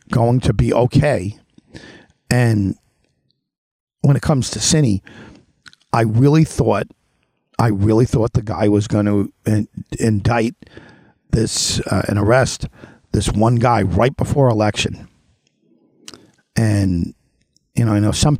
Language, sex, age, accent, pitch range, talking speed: English, male, 50-69, American, 105-140 Hz, 125 wpm